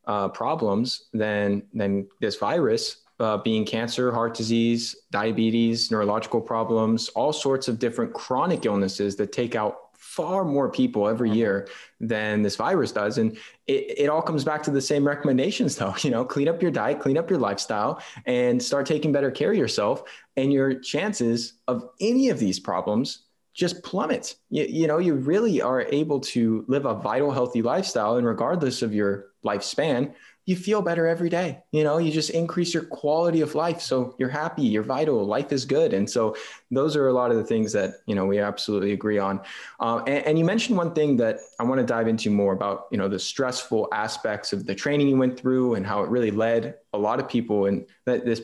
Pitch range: 110-150 Hz